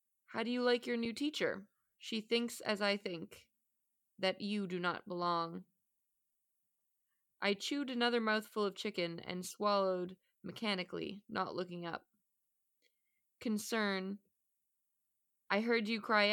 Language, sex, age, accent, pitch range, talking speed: English, female, 20-39, American, 185-230 Hz, 125 wpm